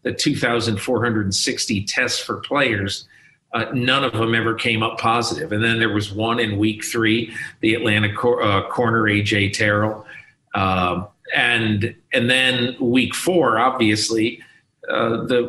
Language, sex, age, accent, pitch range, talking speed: English, male, 40-59, American, 110-125 Hz, 145 wpm